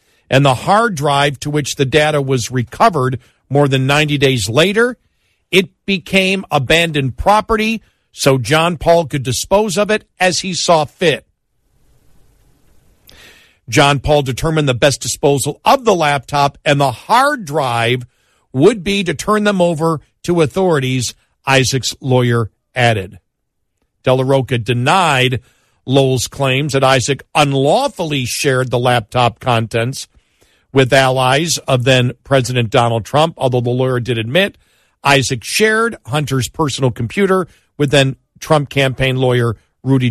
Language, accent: English, American